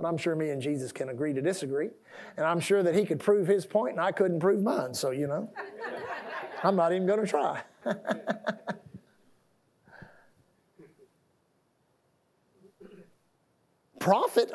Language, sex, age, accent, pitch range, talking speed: English, male, 50-69, American, 205-280 Hz, 140 wpm